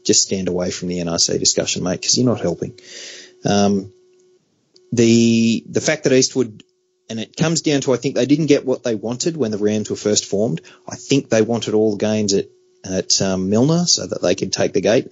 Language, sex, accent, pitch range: English, male, Australian, 95-145 Hz